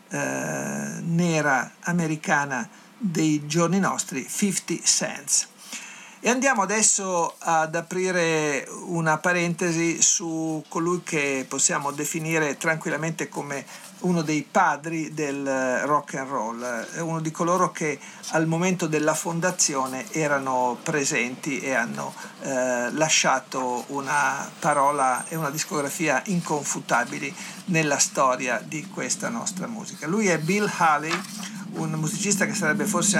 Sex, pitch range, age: male, 145-185 Hz, 50-69